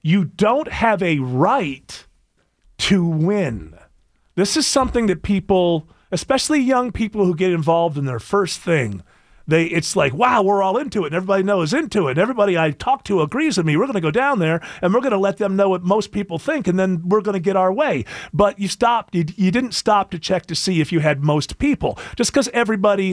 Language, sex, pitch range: English, male, 165-220 Hz